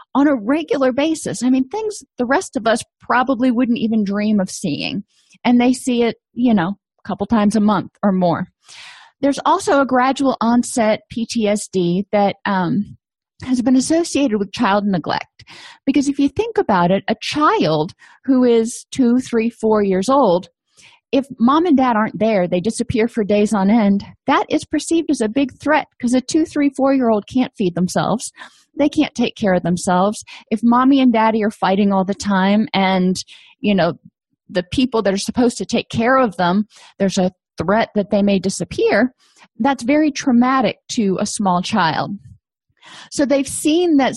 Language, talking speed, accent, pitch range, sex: English, 180 wpm, American, 200-260 Hz, female